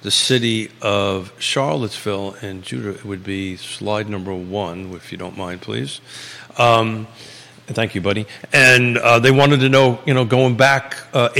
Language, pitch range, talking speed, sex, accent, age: English, 105-125 Hz, 170 wpm, male, American, 50-69